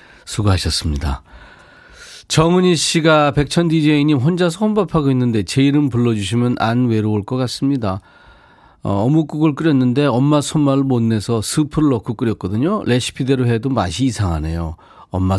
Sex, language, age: male, Korean, 40-59